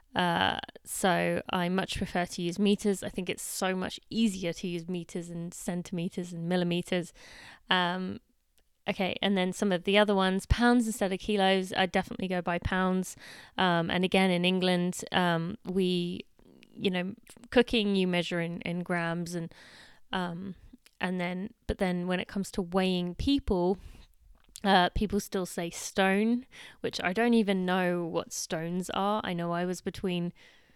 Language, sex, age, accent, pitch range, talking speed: English, female, 20-39, British, 175-200 Hz, 165 wpm